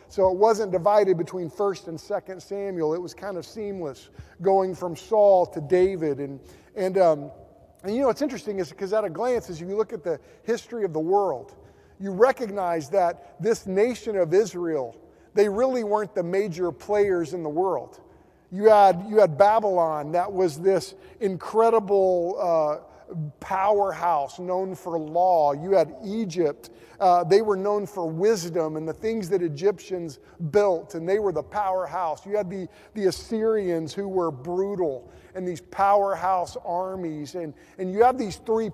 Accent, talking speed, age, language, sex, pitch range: American, 170 wpm, 40-59, English, male, 175-205 Hz